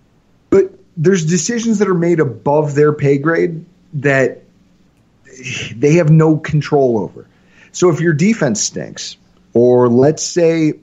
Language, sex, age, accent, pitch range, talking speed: English, male, 30-49, American, 130-175 Hz, 125 wpm